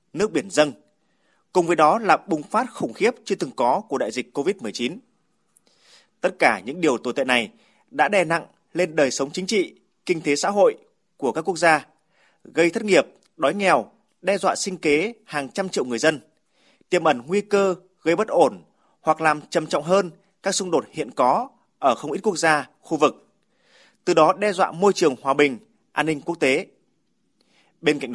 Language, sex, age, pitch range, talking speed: Vietnamese, male, 20-39, 155-210 Hz, 200 wpm